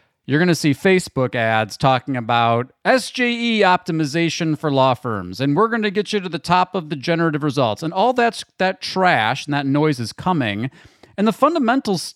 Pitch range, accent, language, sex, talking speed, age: 120-160 Hz, American, English, male, 190 wpm, 40-59